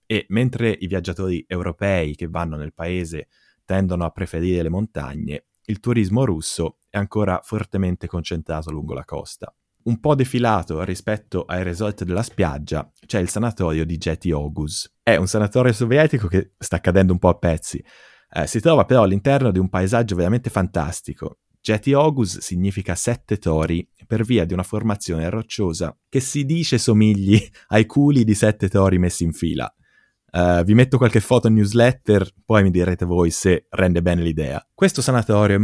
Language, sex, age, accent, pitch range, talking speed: Italian, male, 20-39, native, 90-115 Hz, 165 wpm